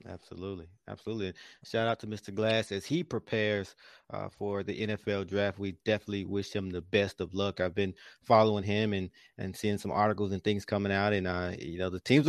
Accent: American